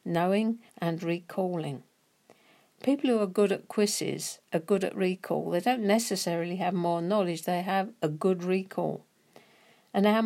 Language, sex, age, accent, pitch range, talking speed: English, female, 50-69, British, 170-225 Hz, 150 wpm